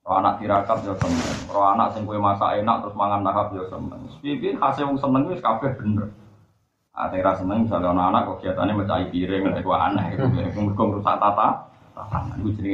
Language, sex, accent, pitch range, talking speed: Indonesian, male, native, 95-130 Hz, 90 wpm